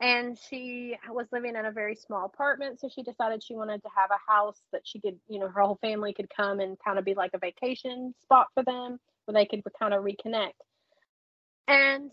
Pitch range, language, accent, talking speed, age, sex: 215-265 Hz, English, American, 225 wpm, 30-49, female